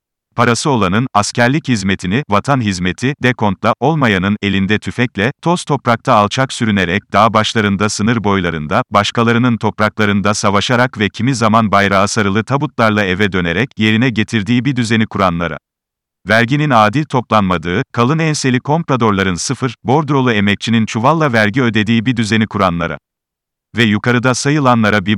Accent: native